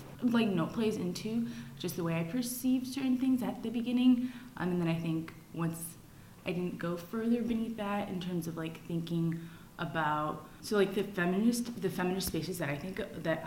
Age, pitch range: 20-39, 160-215 Hz